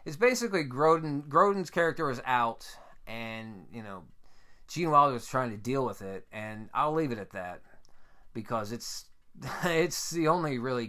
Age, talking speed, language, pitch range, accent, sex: 20-39, 165 wpm, English, 110-145 Hz, American, male